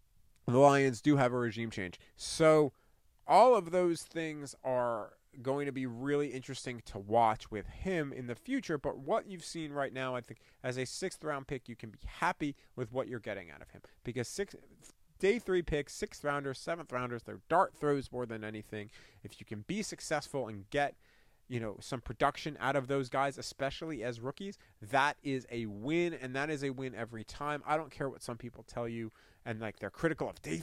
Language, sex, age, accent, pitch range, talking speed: English, male, 30-49, American, 115-150 Hz, 210 wpm